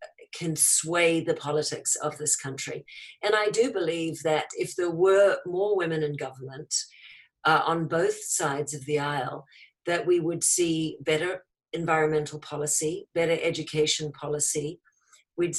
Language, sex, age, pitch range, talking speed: English, female, 50-69, 150-175 Hz, 140 wpm